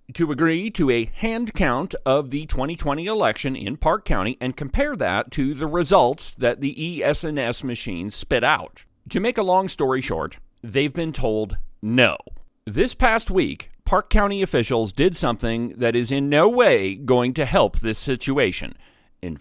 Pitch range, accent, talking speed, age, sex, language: 115-165 Hz, American, 170 wpm, 40-59, male, English